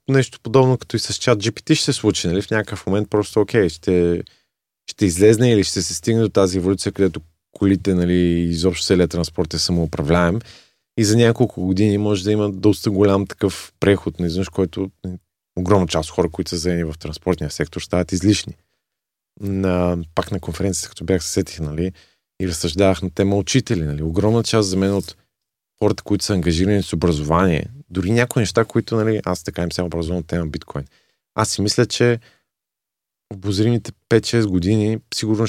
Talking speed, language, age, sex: 175 wpm, Bulgarian, 30-49, male